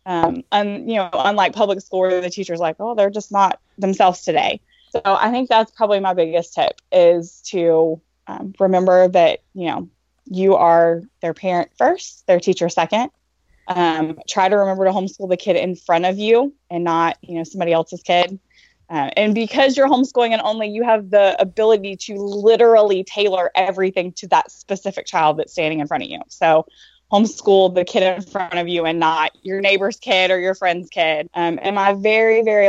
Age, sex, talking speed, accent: 20-39, female, 195 wpm, American